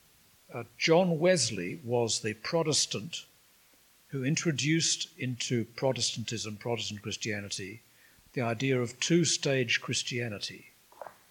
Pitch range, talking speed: 115-145 Hz, 90 wpm